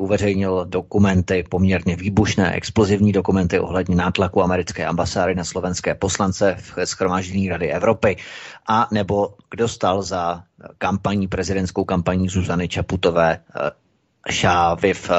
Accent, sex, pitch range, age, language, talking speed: native, male, 90-105 Hz, 30-49, Czech, 115 wpm